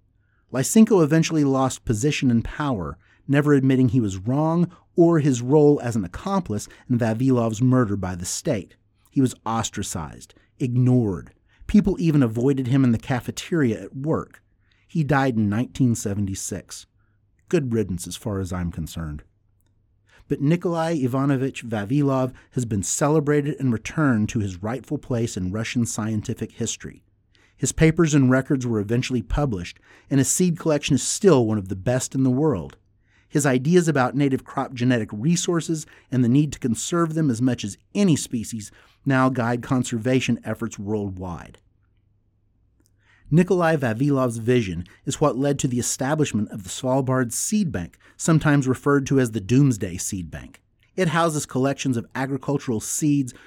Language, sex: English, male